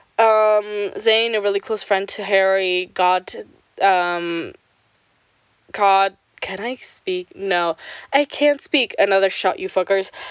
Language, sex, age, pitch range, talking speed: English, female, 10-29, 195-300 Hz, 130 wpm